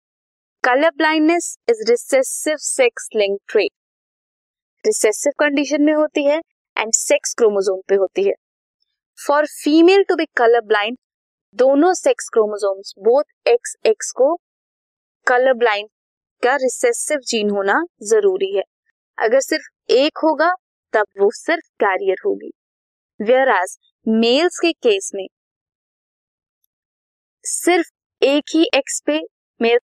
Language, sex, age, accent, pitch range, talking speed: Hindi, female, 20-39, native, 220-365 Hz, 70 wpm